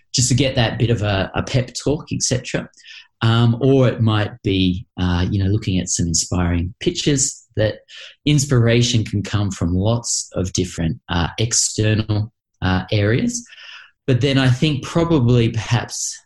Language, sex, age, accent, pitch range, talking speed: English, male, 30-49, Australian, 100-125 Hz, 160 wpm